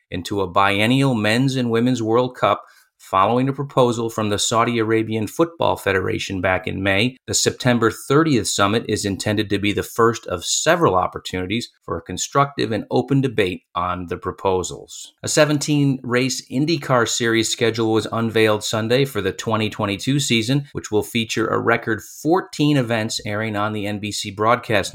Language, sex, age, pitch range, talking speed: English, male, 30-49, 100-120 Hz, 160 wpm